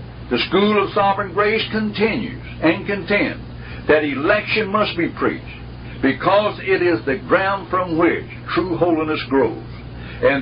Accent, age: American, 60-79